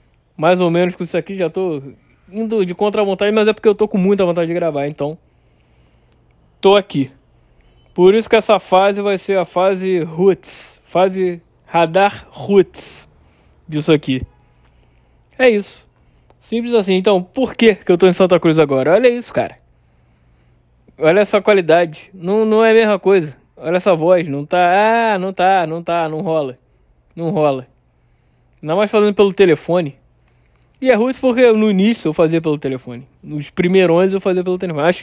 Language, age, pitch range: Portuguese, 20-39, 140-200 Hz